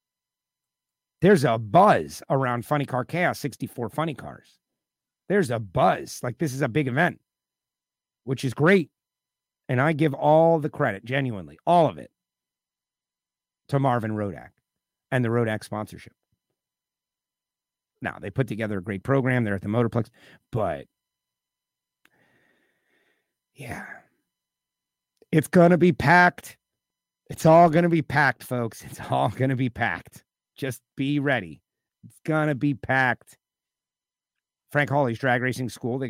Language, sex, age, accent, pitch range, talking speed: English, male, 50-69, American, 105-145 Hz, 140 wpm